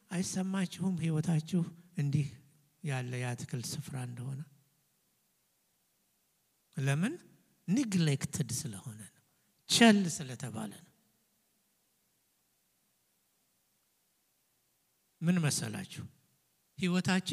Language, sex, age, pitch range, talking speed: English, male, 60-79, 140-200 Hz, 80 wpm